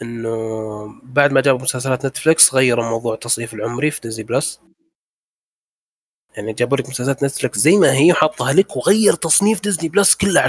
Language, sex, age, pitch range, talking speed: Arabic, male, 20-39, 115-150 Hz, 160 wpm